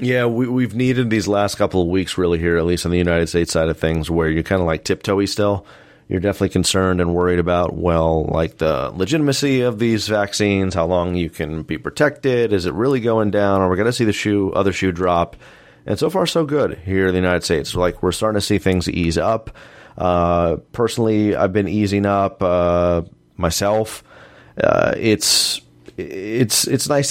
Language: English